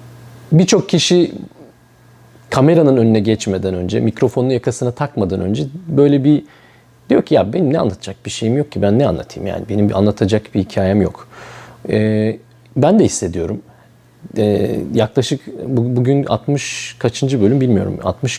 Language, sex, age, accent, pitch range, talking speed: Turkish, male, 40-59, native, 105-140 Hz, 145 wpm